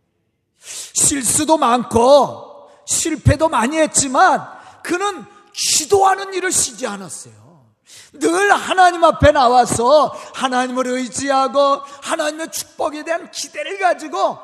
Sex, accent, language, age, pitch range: male, native, Korean, 40-59, 205-305 Hz